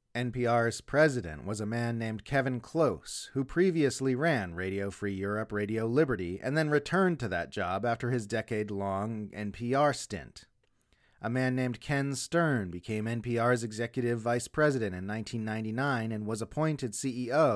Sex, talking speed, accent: male, 145 wpm, American